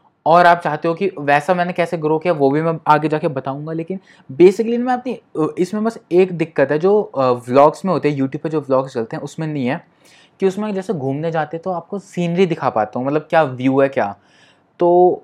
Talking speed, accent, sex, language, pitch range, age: 220 wpm, native, male, Hindi, 145-175 Hz, 20-39